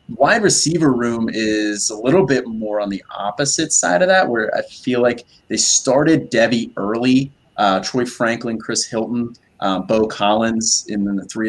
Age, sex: 20-39, male